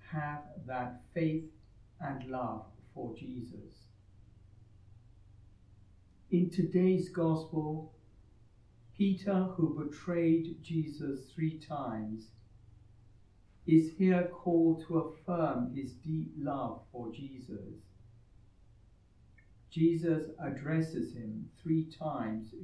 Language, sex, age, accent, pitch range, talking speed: English, male, 60-79, British, 110-155 Hz, 80 wpm